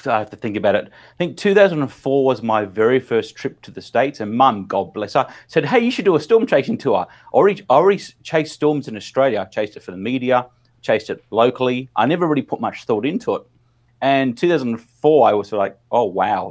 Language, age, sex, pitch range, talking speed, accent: English, 30-49, male, 105-125 Hz, 230 wpm, Australian